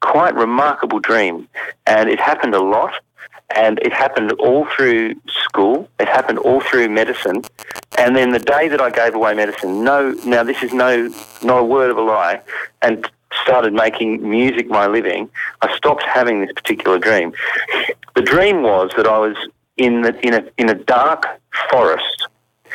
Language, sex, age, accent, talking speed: English, male, 40-59, Australian, 170 wpm